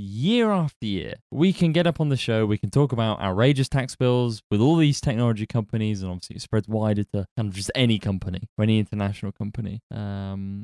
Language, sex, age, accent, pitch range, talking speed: English, male, 20-39, British, 105-135 Hz, 215 wpm